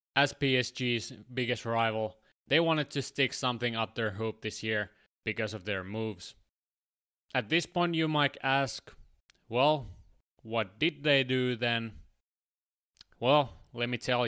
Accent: Finnish